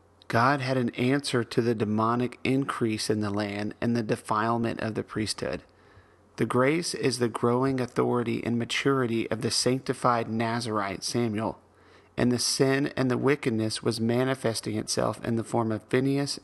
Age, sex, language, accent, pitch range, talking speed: 40-59, male, English, American, 110-130 Hz, 160 wpm